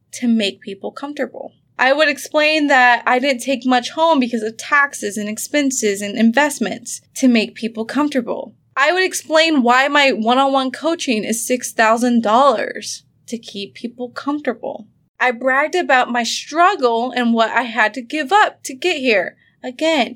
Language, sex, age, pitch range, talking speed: English, female, 20-39, 220-280 Hz, 160 wpm